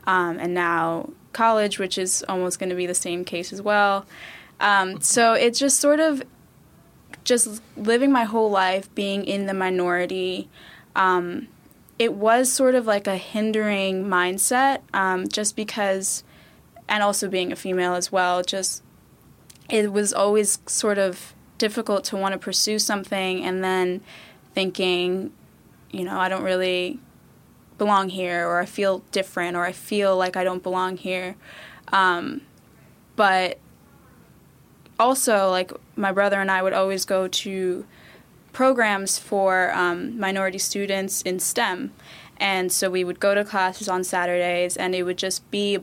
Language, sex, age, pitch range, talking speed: English, female, 10-29, 185-210 Hz, 155 wpm